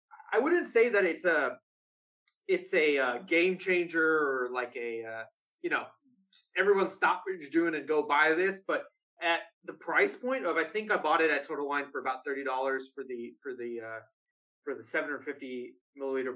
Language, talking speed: English, 185 wpm